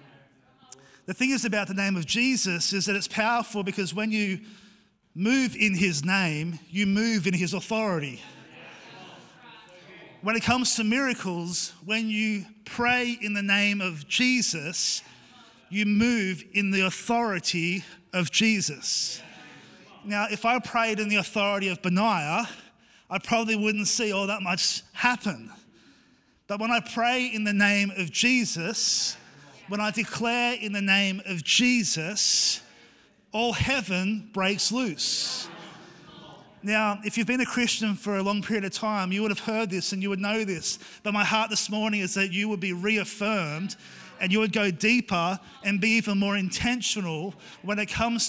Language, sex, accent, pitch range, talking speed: English, male, Australian, 185-220 Hz, 160 wpm